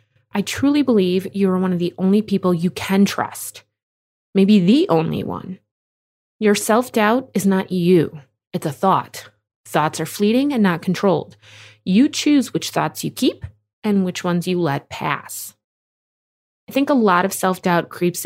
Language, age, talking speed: English, 20-39, 165 wpm